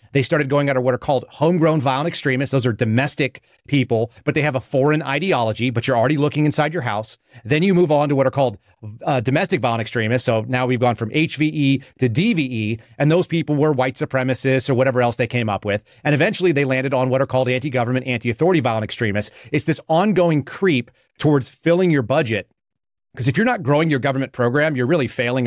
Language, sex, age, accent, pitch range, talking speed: English, male, 30-49, American, 125-150 Hz, 215 wpm